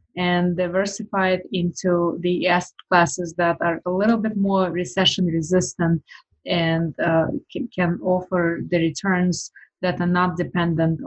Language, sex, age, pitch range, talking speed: English, female, 20-39, 165-180 Hz, 135 wpm